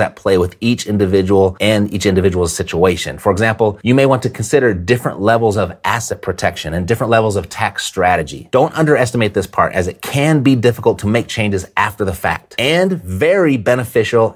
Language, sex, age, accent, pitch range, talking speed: English, male, 30-49, American, 100-135 Hz, 190 wpm